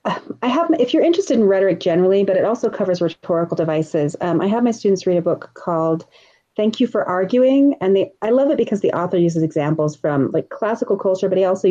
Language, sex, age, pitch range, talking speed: English, female, 30-49, 165-220 Hz, 225 wpm